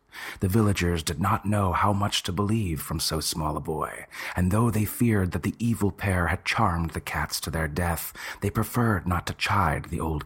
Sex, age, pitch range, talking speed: male, 30-49, 80-100 Hz, 210 wpm